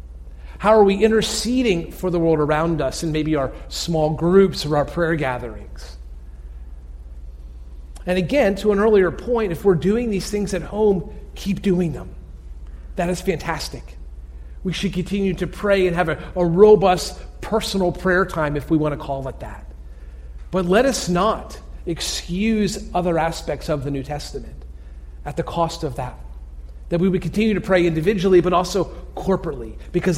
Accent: American